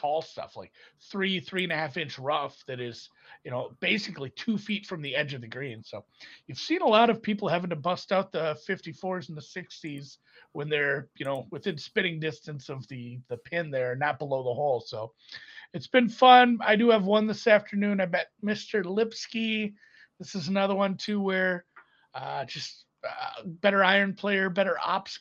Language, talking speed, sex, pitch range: English, 200 wpm, male, 145-210 Hz